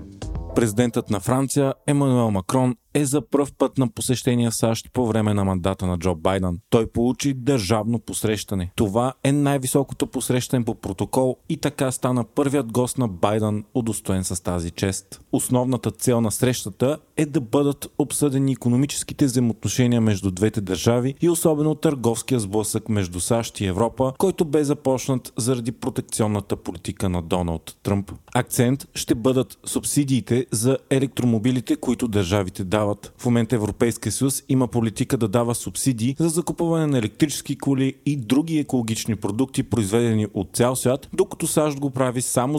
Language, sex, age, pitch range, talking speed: Bulgarian, male, 40-59, 110-135 Hz, 150 wpm